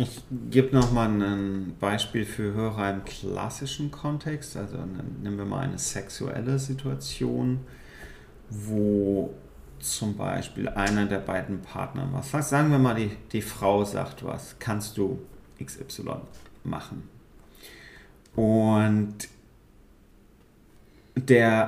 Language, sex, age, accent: German, male, 40-59, German